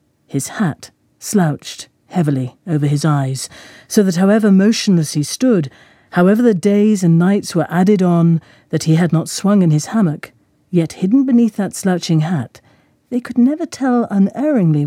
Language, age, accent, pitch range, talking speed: English, 50-69, British, 160-230 Hz, 160 wpm